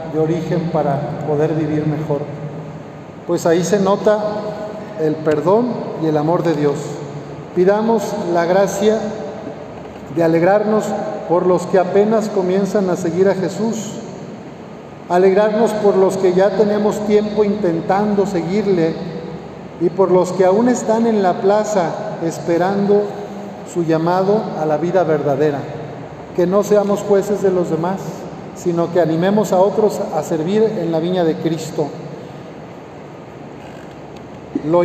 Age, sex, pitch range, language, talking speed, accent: 50-69, male, 165-205 Hz, Spanish, 130 wpm, Mexican